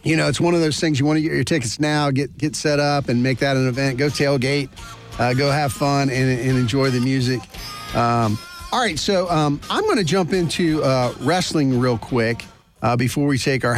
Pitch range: 125-155 Hz